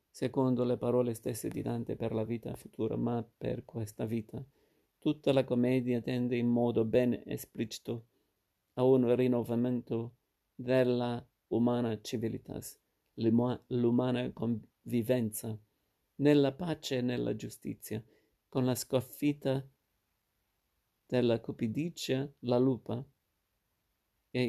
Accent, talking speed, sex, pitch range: native, 105 wpm, male, 115-130 Hz